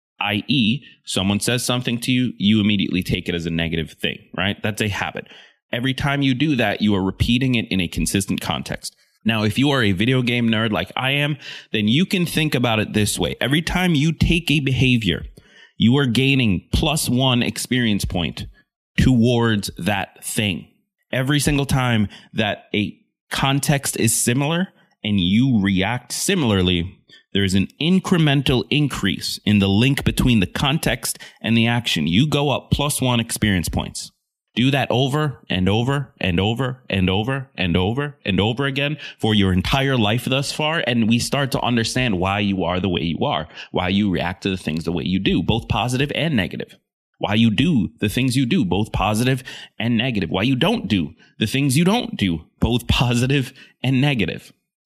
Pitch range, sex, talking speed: 100-140 Hz, male, 185 wpm